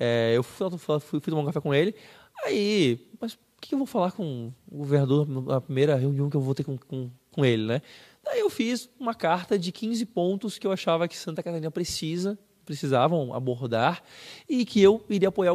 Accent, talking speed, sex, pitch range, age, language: Brazilian, 195 wpm, male, 140-205 Hz, 20-39, Portuguese